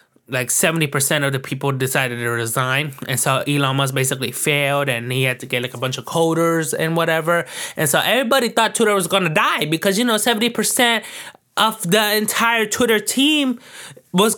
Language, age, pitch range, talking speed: English, 20-39, 140-200 Hz, 190 wpm